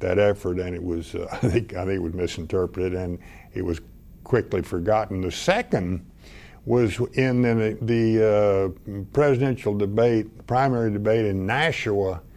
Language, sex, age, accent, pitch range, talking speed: English, male, 60-79, American, 95-110 Hz, 150 wpm